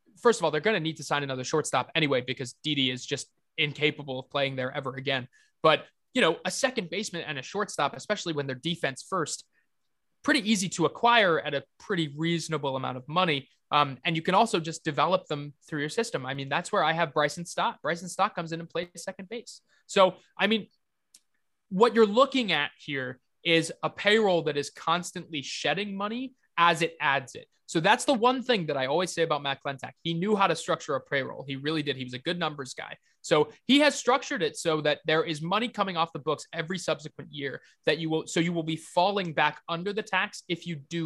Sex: male